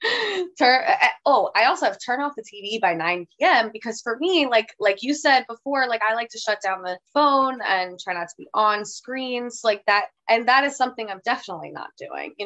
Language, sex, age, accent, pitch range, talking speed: English, female, 20-39, American, 180-230 Hz, 210 wpm